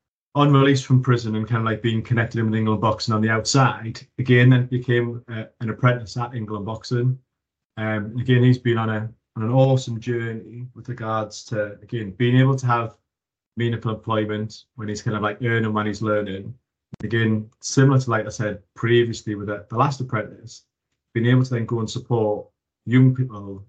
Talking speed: 190 wpm